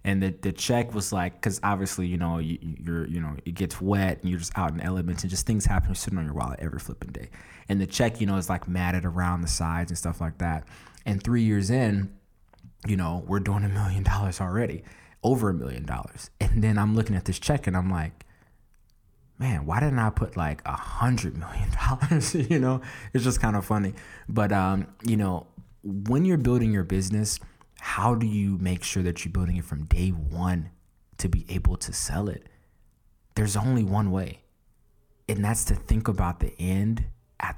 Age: 20-39